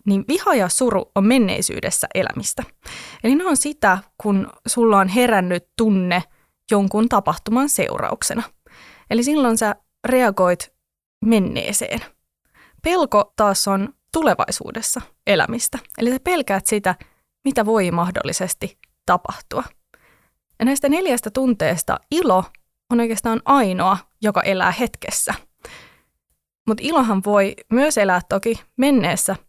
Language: Finnish